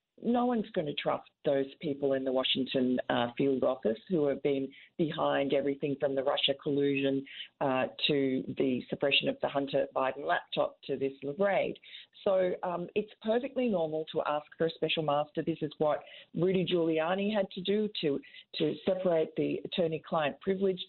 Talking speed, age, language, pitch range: 170 wpm, 40-59, English, 145-185 Hz